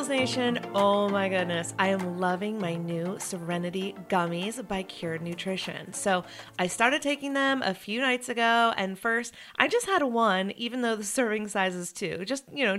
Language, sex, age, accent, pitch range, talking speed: English, female, 30-49, American, 180-225 Hz, 185 wpm